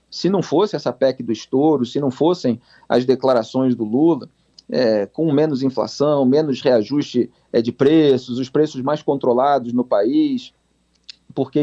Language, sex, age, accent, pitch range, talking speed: Portuguese, male, 40-59, Brazilian, 125-175 Hz, 145 wpm